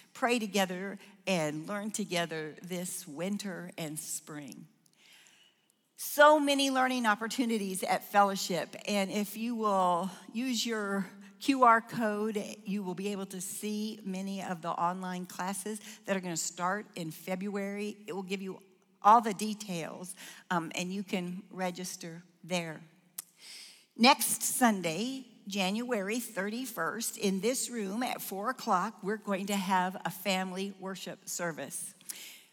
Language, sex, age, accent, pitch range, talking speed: English, female, 50-69, American, 185-220 Hz, 130 wpm